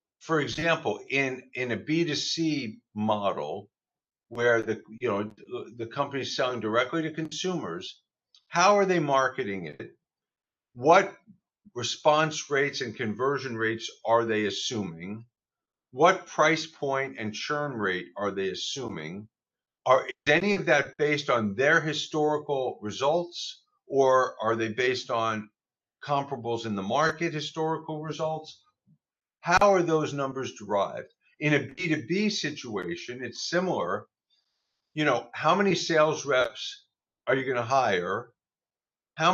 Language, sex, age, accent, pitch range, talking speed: English, male, 50-69, American, 120-165 Hz, 130 wpm